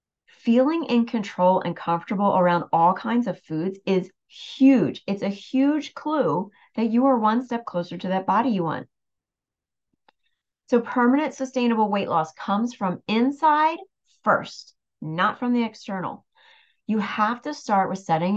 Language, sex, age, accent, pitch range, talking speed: English, female, 30-49, American, 170-235 Hz, 150 wpm